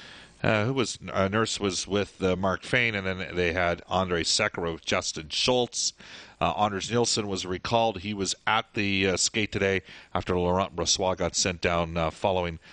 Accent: American